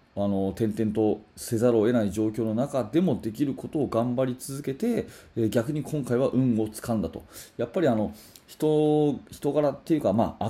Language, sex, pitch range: Japanese, male, 105-135 Hz